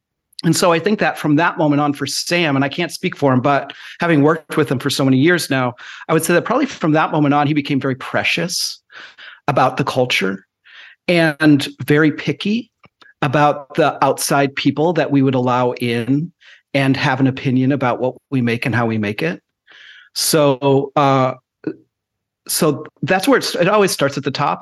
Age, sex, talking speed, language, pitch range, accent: 40-59, male, 195 wpm, English, 130-155 Hz, American